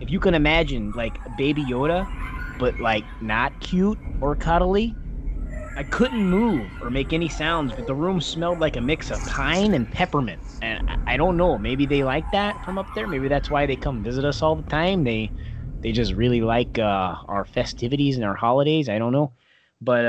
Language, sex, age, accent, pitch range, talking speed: English, male, 20-39, American, 120-165 Hz, 200 wpm